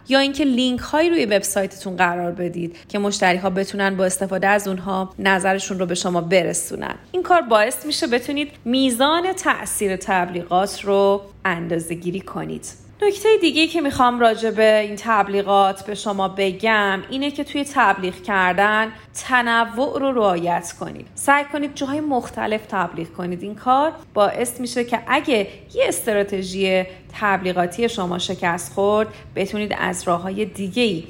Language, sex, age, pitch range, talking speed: Persian, female, 30-49, 190-255 Hz, 145 wpm